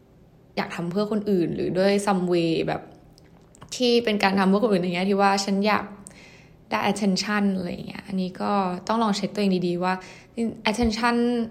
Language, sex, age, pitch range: Thai, female, 10-29, 180-215 Hz